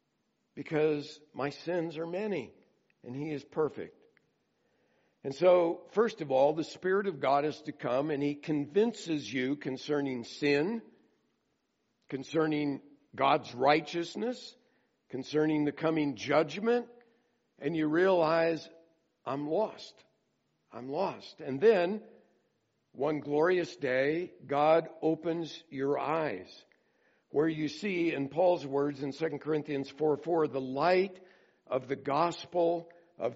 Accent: American